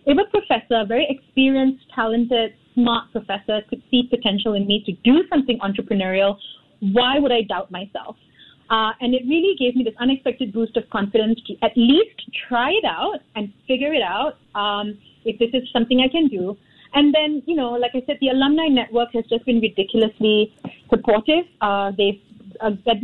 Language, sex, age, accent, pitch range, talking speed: English, female, 30-49, Indian, 210-260 Hz, 185 wpm